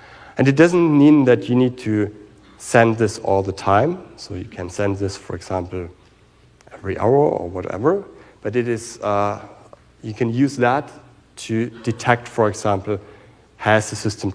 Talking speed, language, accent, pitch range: 165 wpm, English, German, 105-125 Hz